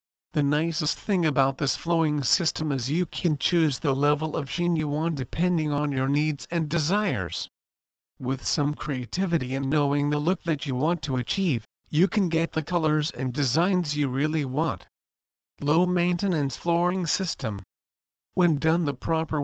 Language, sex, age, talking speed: English, male, 50-69, 165 wpm